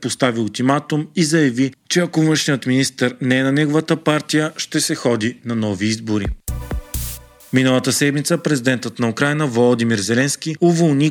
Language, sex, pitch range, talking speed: Bulgarian, male, 115-150 Hz, 145 wpm